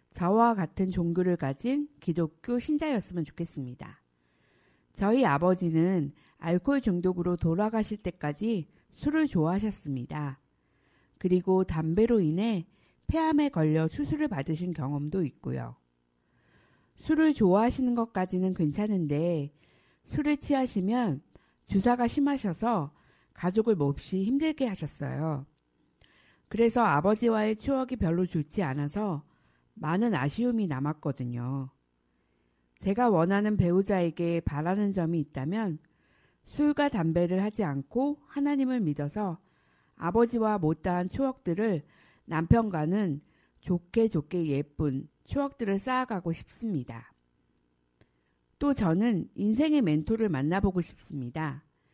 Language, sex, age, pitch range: Korean, female, 50-69, 150-225 Hz